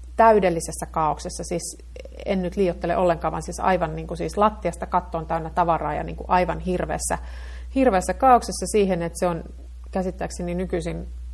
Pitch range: 155-220 Hz